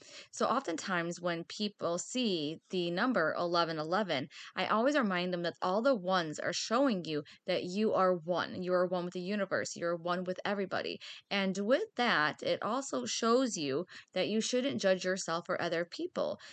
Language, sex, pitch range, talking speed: English, female, 175-210 Hz, 175 wpm